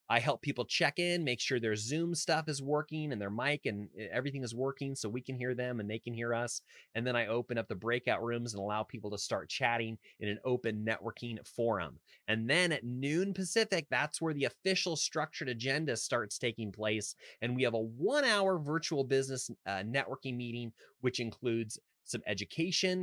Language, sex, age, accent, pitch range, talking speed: English, male, 30-49, American, 115-145 Hz, 200 wpm